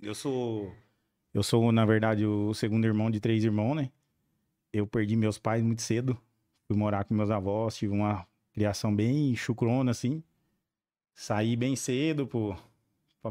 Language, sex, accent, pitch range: Portuguese, male, Brazilian, 110-130 Hz